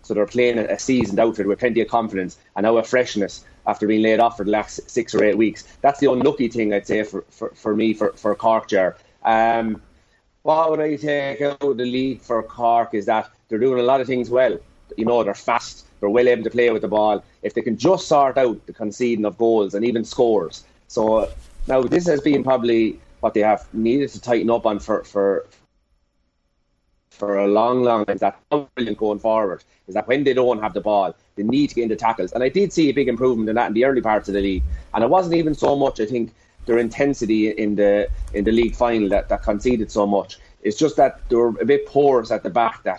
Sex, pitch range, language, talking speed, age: male, 105-130 Hz, English, 235 wpm, 30-49